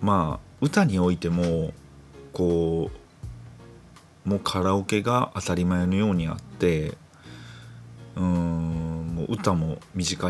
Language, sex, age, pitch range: Japanese, male, 40-59, 80-120 Hz